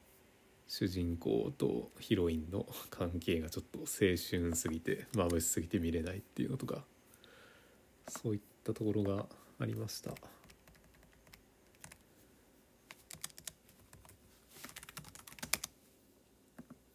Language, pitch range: Japanese, 90-115 Hz